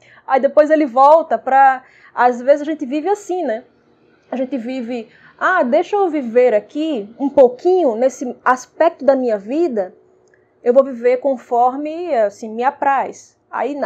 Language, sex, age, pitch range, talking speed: Portuguese, female, 20-39, 230-285 Hz, 150 wpm